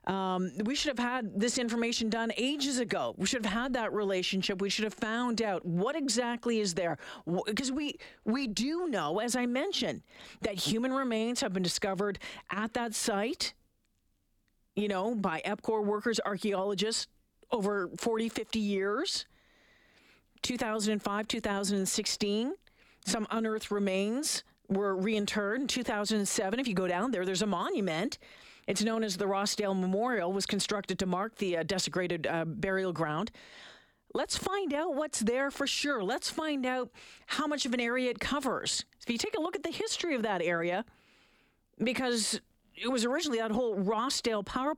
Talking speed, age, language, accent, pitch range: 165 wpm, 40-59, English, American, 200-250 Hz